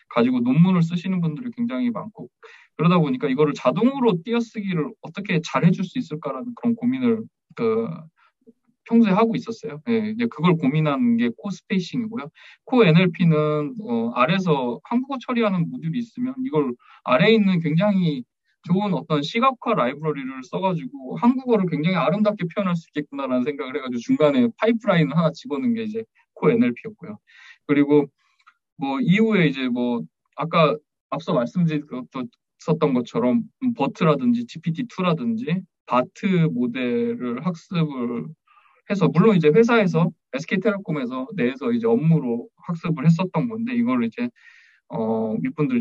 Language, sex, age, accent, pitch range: Korean, male, 20-39, native, 150-230 Hz